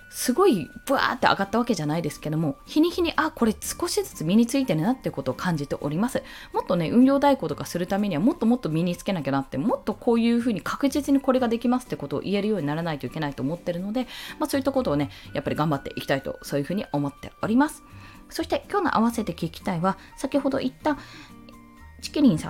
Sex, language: female, Japanese